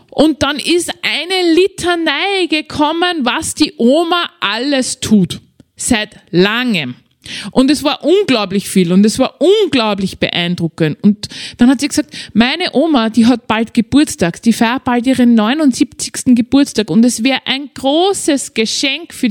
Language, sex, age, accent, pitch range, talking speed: German, female, 20-39, Austrian, 200-270 Hz, 145 wpm